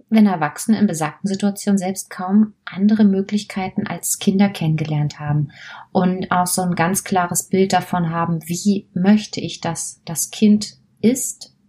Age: 30-49